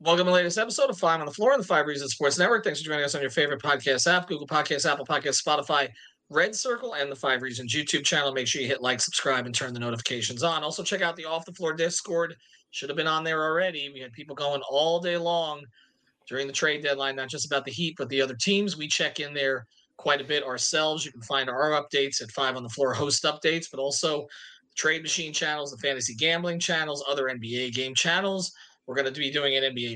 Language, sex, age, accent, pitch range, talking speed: English, male, 30-49, American, 140-190 Hz, 245 wpm